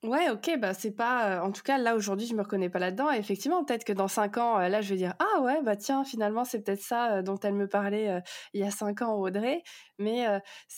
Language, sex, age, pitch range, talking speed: French, female, 20-39, 210-255 Hz, 260 wpm